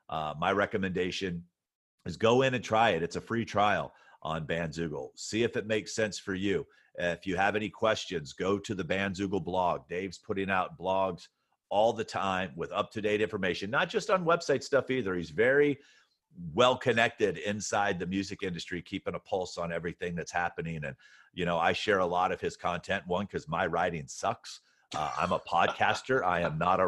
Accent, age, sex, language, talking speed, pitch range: American, 40-59, male, English, 190 wpm, 90-115 Hz